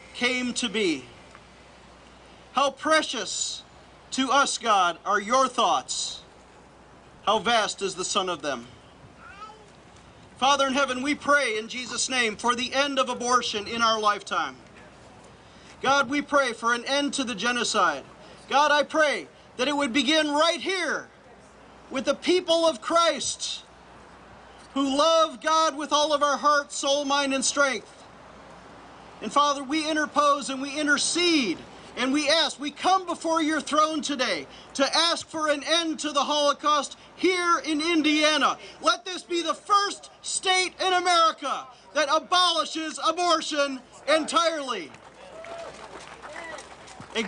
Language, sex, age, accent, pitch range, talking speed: English, male, 40-59, American, 265-315 Hz, 140 wpm